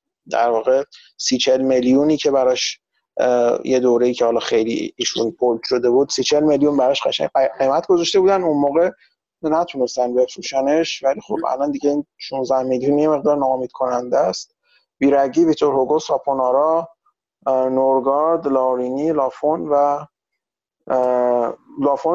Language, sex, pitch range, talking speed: Persian, male, 130-165 Hz, 130 wpm